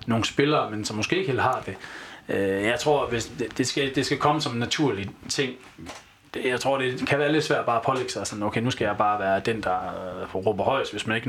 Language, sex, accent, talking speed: Danish, male, native, 245 wpm